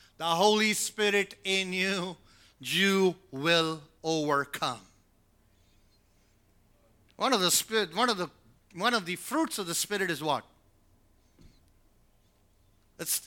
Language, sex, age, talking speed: English, male, 50-69, 115 wpm